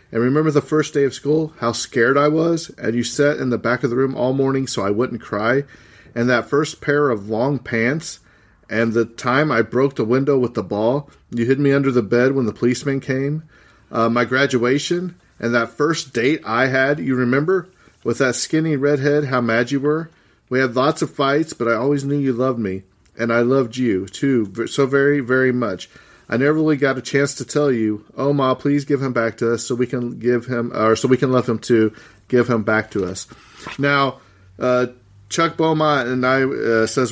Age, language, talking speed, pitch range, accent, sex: 40-59, English, 215 wpm, 115-140 Hz, American, male